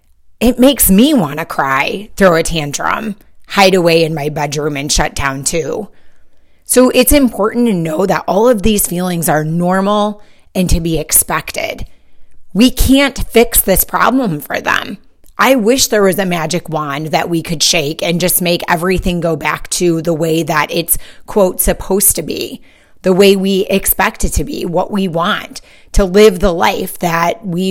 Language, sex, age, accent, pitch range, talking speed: English, female, 30-49, American, 160-210 Hz, 180 wpm